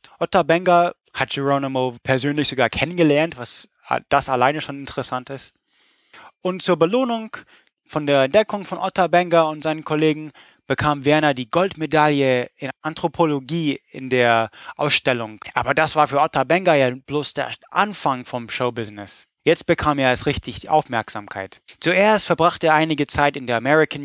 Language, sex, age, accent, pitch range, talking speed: German, male, 20-39, German, 130-170 Hz, 155 wpm